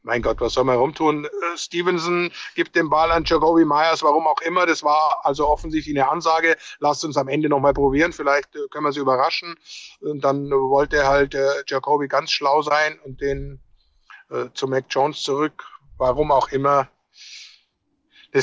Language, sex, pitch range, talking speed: German, male, 140-175 Hz, 175 wpm